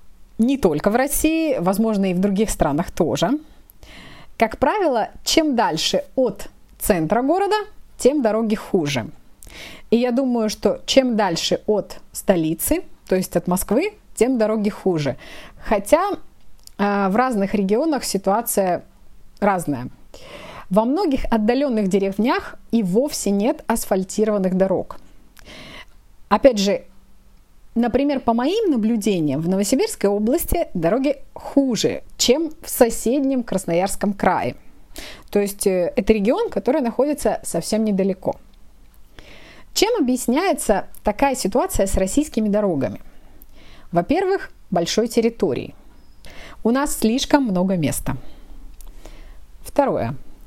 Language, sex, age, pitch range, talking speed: Russian, female, 20-39, 195-265 Hz, 110 wpm